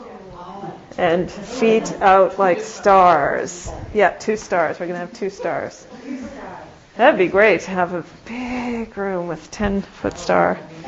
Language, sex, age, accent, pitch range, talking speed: English, female, 40-59, American, 170-220 Hz, 145 wpm